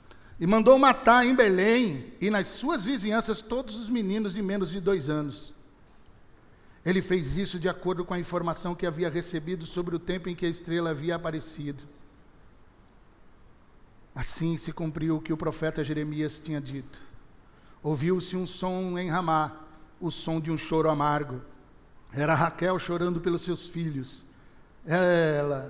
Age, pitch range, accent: 60-79, 150-180 Hz, Brazilian